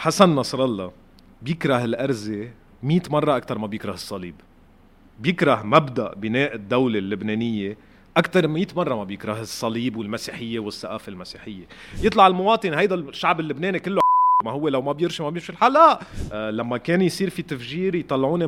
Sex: male